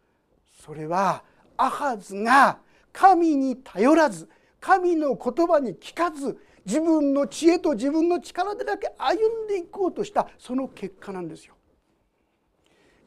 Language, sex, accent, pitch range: Japanese, male, native, 205-290 Hz